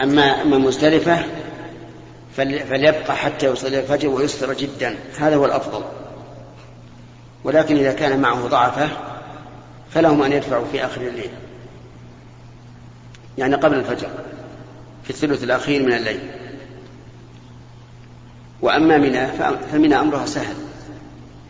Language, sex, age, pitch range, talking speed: Arabic, male, 50-69, 120-140 Hz, 100 wpm